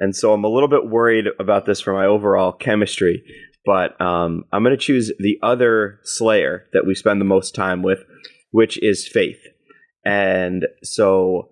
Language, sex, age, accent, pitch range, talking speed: English, male, 30-49, American, 95-120 Hz, 175 wpm